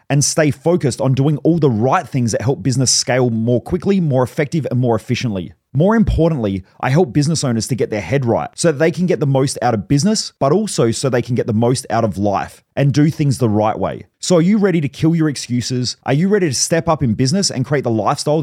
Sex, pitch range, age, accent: male, 115-150 Hz, 30-49, Australian